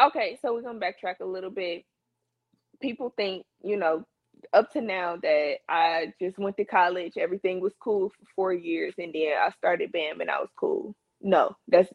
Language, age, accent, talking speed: English, 20-39, American, 190 wpm